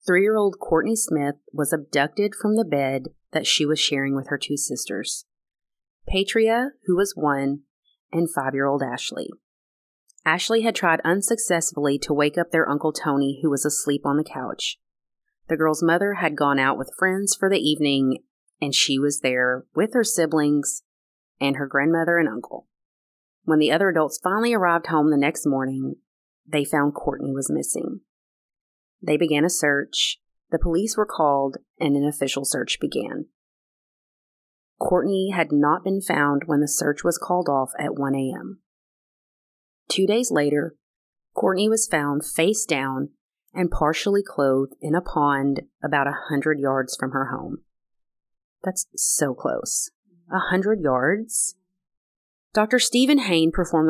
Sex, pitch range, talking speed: female, 140-180 Hz, 150 wpm